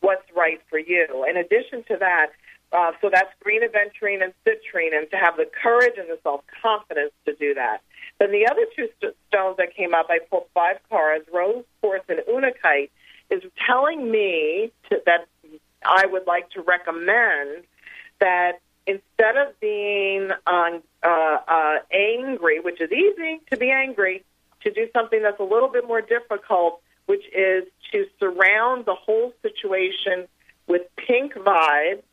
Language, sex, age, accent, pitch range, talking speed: English, female, 40-59, American, 180-265 Hz, 160 wpm